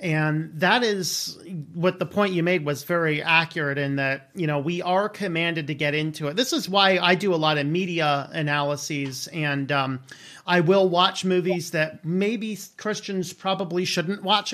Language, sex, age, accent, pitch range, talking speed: English, male, 40-59, American, 155-195 Hz, 180 wpm